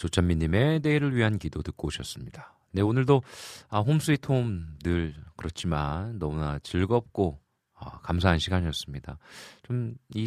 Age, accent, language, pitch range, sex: 40-59, native, Korean, 75-110 Hz, male